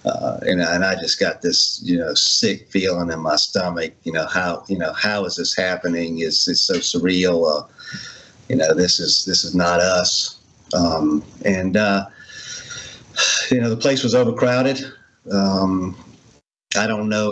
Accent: American